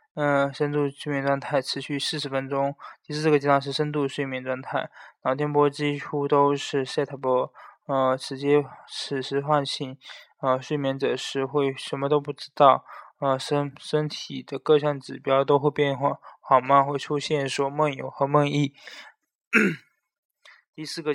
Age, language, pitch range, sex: 20-39, Chinese, 135-145 Hz, male